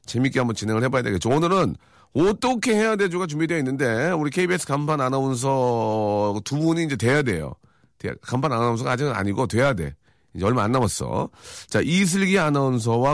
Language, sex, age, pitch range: Korean, male, 40-59, 110-160 Hz